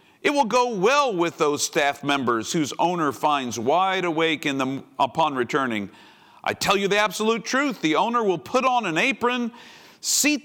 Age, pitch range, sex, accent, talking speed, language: 50-69, 120-195 Hz, male, American, 180 wpm, English